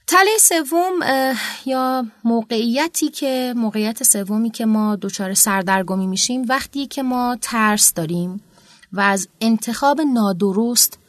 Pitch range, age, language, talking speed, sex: 180-235 Hz, 30-49, Persian, 115 wpm, female